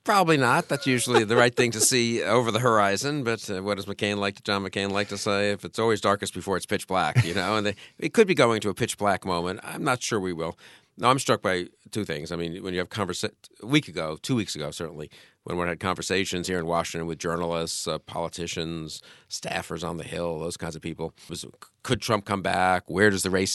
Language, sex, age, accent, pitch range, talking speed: English, male, 50-69, American, 85-110 Hz, 245 wpm